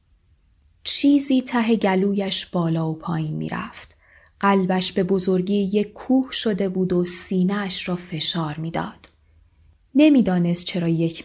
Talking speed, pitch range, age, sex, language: 115 wpm, 160-200 Hz, 20-39, female, Persian